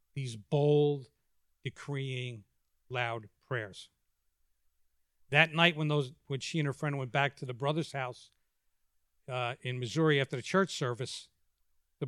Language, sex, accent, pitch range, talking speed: English, male, American, 100-155 Hz, 140 wpm